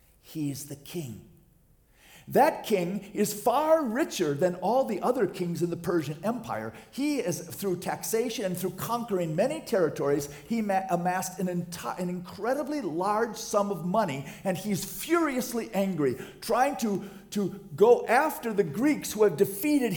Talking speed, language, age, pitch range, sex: 145 wpm, English, 50-69, 175-265 Hz, male